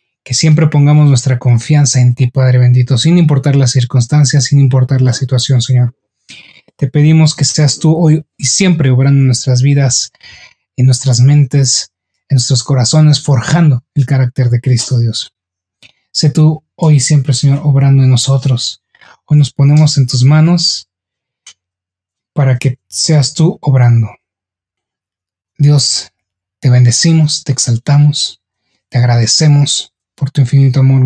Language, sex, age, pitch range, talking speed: Spanish, male, 30-49, 120-145 Hz, 140 wpm